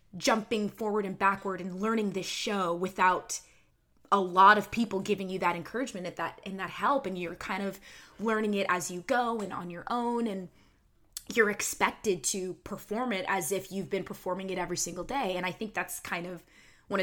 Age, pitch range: 20-39, 170-200 Hz